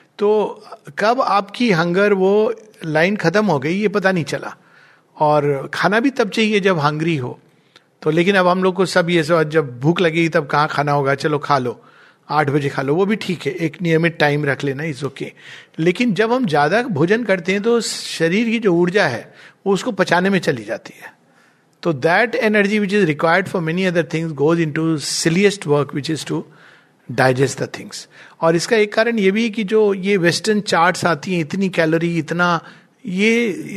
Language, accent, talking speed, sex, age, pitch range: Hindi, native, 195 wpm, male, 50-69, 160-210 Hz